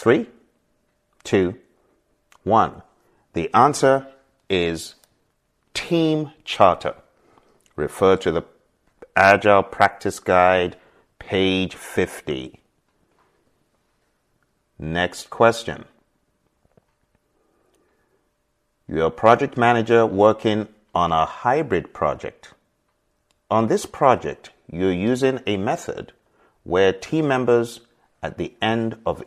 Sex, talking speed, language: male, 85 wpm, English